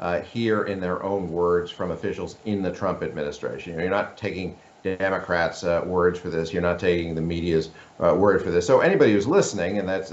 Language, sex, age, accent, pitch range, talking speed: English, male, 50-69, American, 80-95 Hz, 205 wpm